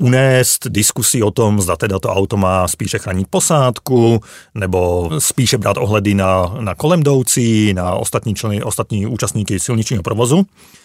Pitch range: 100-125 Hz